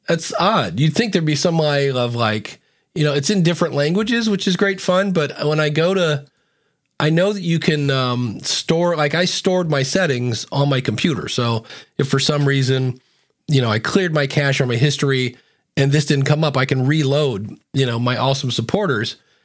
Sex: male